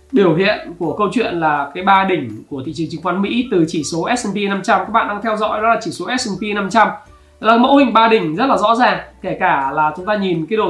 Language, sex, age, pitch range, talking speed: Vietnamese, male, 20-39, 170-225 Hz, 270 wpm